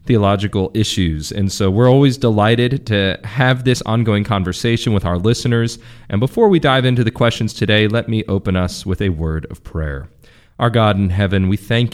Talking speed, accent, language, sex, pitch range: 190 wpm, American, English, male, 95-120 Hz